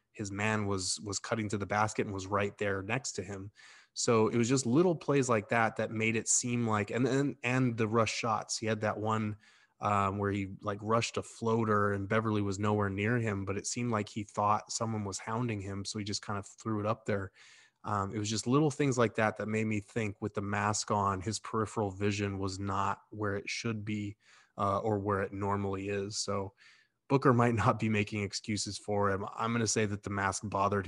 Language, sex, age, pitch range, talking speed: English, male, 20-39, 100-115 Hz, 230 wpm